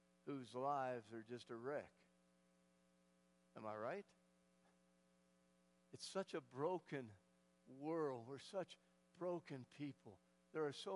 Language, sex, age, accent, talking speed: English, male, 60-79, American, 115 wpm